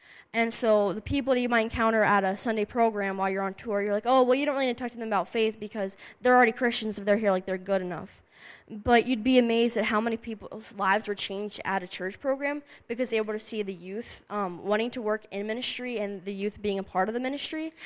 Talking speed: 265 wpm